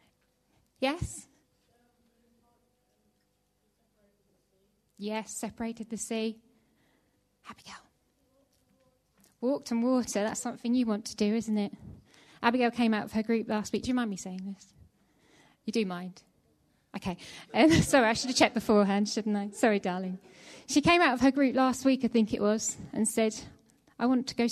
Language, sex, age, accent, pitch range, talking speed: English, female, 30-49, British, 205-245 Hz, 155 wpm